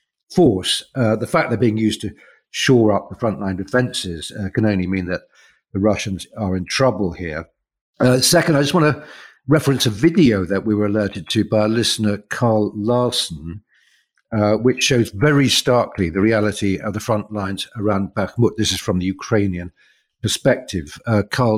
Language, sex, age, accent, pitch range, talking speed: English, male, 50-69, British, 95-115 Hz, 175 wpm